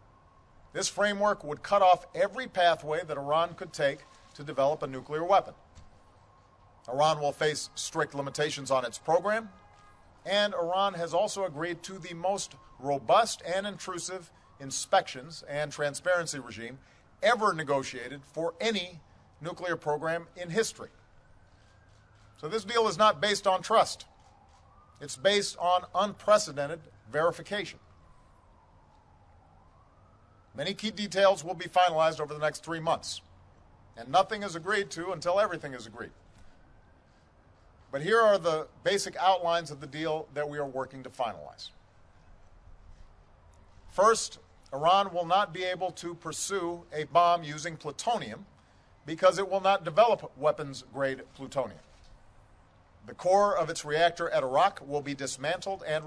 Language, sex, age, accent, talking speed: English, male, 50-69, American, 135 wpm